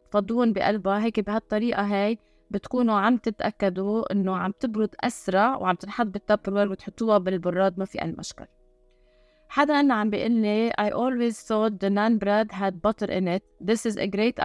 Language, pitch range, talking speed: Arabic, 185-220 Hz, 160 wpm